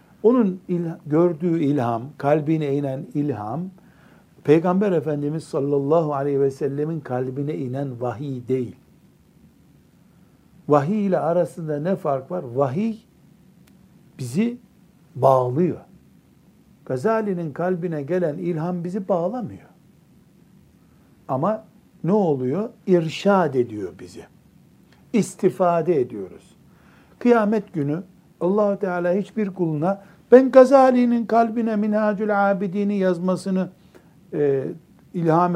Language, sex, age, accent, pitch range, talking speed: Turkish, male, 60-79, native, 150-200 Hz, 90 wpm